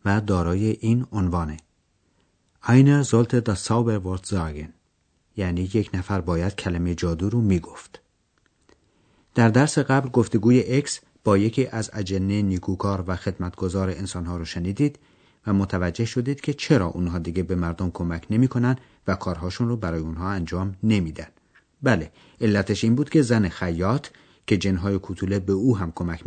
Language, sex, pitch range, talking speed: Persian, male, 90-115 Hz, 140 wpm